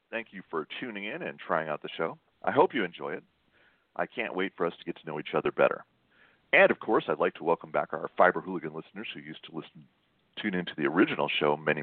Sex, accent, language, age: male, American, English, 40-59